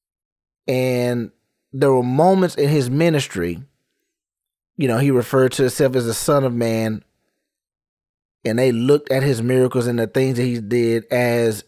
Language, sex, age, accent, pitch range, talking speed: English, male, 30-49, American, 125-175 Hz, 160 wpm